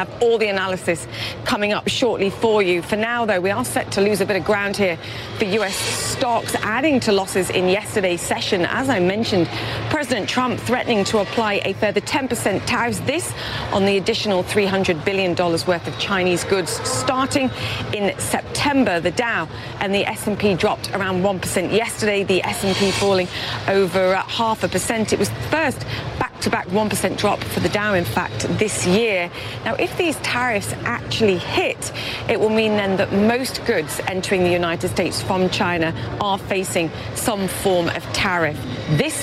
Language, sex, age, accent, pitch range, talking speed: English, female, 40-59, British, 170-210 Hz, 175 wpm